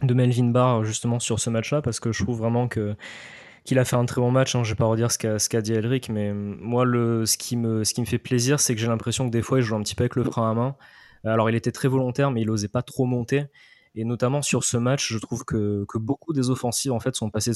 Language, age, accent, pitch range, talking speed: French, 20-39, French, 110-125 Hz, 295 wpm